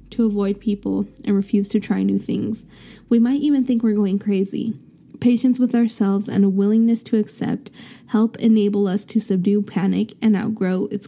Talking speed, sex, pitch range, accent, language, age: 180 wpm, female, 195-225 Hz, American, English, 10-29